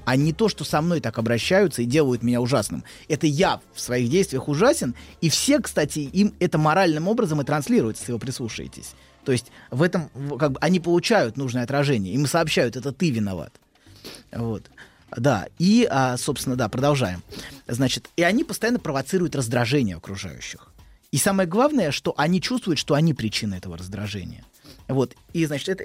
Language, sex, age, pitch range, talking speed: Russian, male, 20-39, 120-180 Hz, 165 wpm